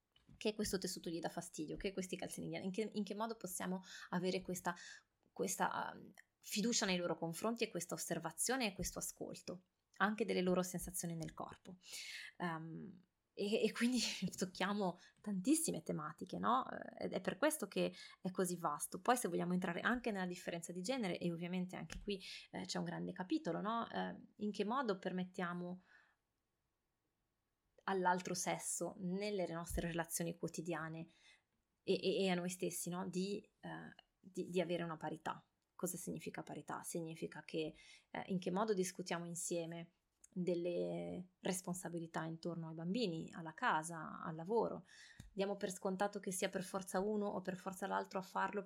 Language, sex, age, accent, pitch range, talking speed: Italian, female, 20-39, native, 170-200 Hz, 160 wpm